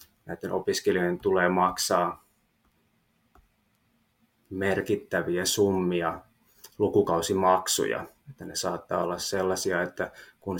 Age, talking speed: 20-39, 80 wpm